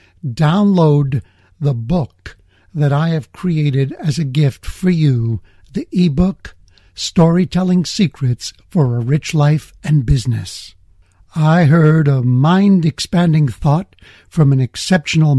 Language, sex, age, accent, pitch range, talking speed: English, male, 60-79, American, 130-180 Hz, 115 wpm